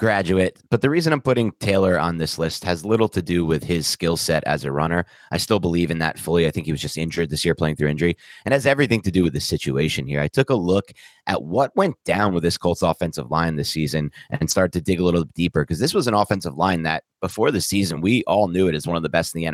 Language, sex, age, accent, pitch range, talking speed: English, male, 30-49, American, 80-100 Hz, 275 wpm